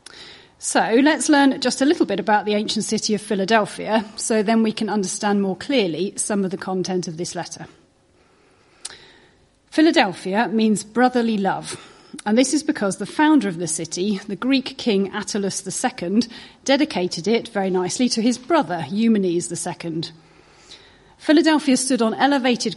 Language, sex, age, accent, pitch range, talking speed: English, female, 30-49, British, 195-250 Hz, 155 wpm